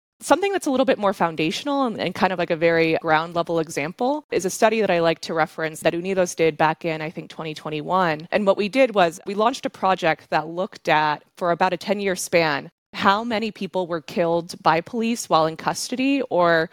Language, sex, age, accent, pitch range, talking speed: English, female, 20-39, American, 160-200 Hz, 210 wpm